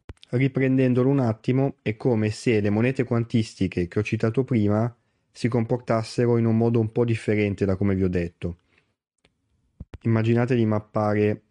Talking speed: 150 wpm